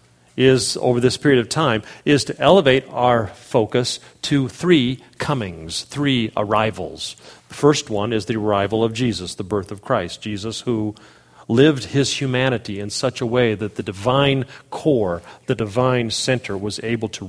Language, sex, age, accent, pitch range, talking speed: English, male, 40-59, American, 100-125 Hz, 165 wpm